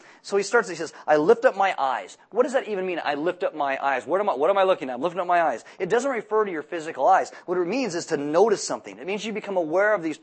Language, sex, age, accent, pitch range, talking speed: English, male, 30-49, American, 155-200 Hz, 315 wpm